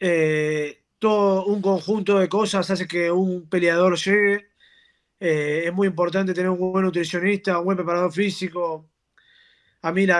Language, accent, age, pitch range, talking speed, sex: Spanish, Argentinian, 20-39, 165-195 Hz, 155 wpm, male